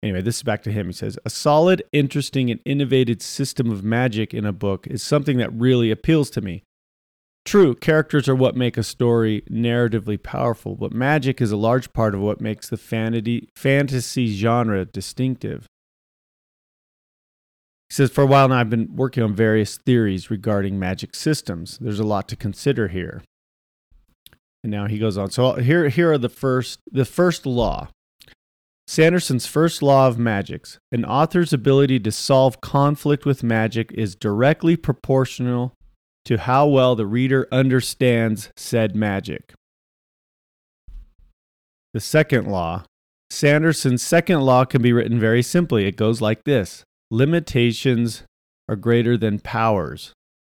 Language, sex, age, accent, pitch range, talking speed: English, male, 40-59, American, 105-130 Hz, 150 wpm